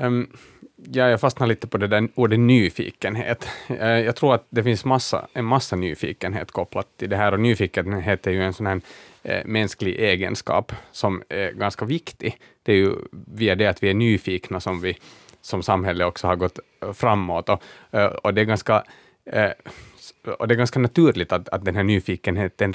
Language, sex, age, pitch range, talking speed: Swedish, male, 30-49, 95-120 Hz, 170 wpm